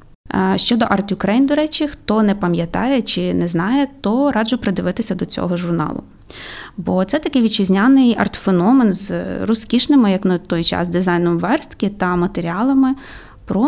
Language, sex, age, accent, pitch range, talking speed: Ukrainian, female, 20-39, native, 185-235 Hz, 145 wpm